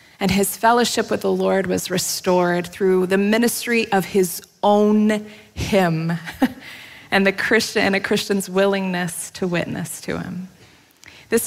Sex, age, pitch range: female, 20-39, 160-205 Hz